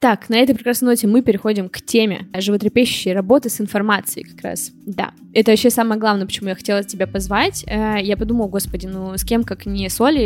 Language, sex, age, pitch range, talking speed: Russian, female, 20-39, 205-250 Hz, 200 wpm